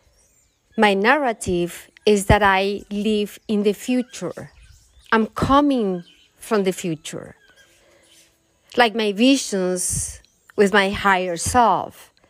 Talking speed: 100 wpm